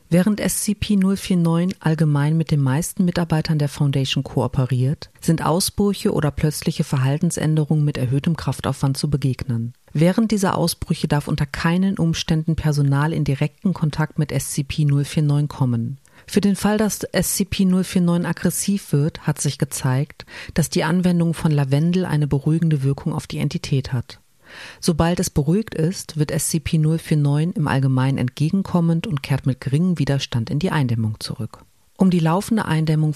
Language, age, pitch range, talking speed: German, 40-59, 140-170 Hz, 140 wpm